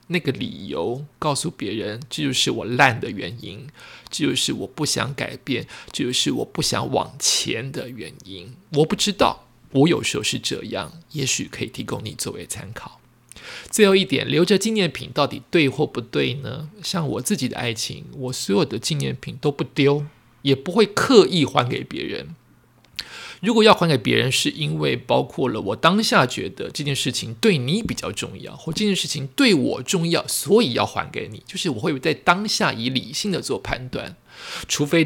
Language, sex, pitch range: Chinese, male, 135-195 Hz